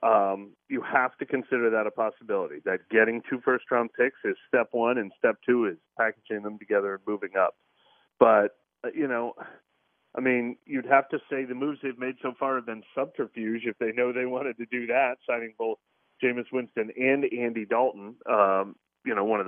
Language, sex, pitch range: English, male, 110-135 Hz